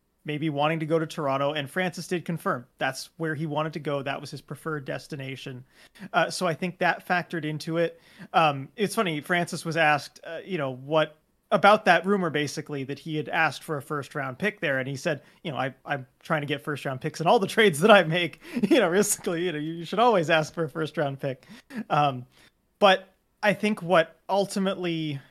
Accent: American